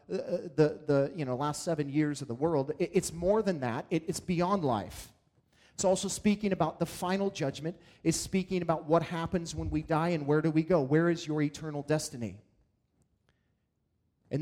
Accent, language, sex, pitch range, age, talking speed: American, English, male, 135-180 Hz, 30-49, 185 wpm